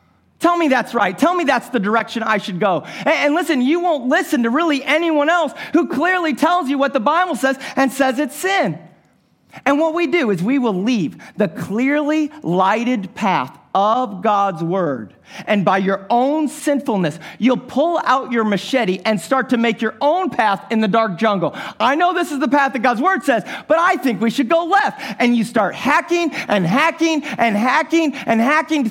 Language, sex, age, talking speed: English, male, 40-59, 200 wpm